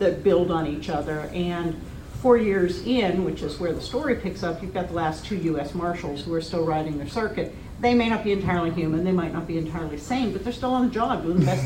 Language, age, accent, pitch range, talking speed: English, 50-69, American, 175-215 Hz, 255 wpm